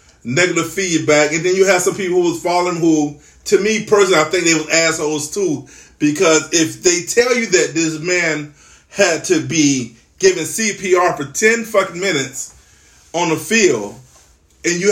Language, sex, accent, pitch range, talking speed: English, male, American, 135-185 Hz, 175 wpm